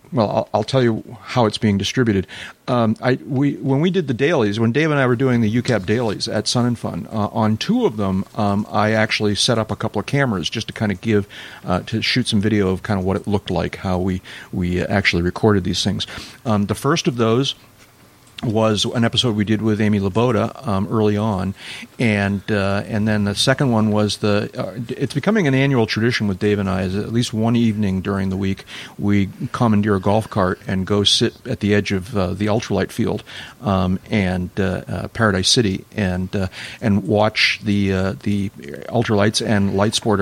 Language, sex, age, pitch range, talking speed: English, male, 40-59, 100-115 Hz, 215 wpm